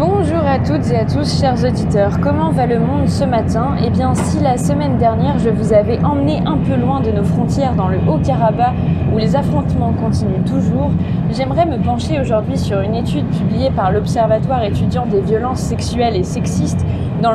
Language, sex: French, female